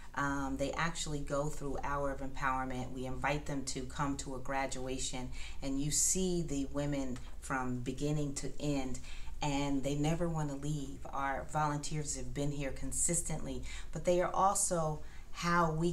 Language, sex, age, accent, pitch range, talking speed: English, female, 30-49, American, 130-145 Hz, 160 wpm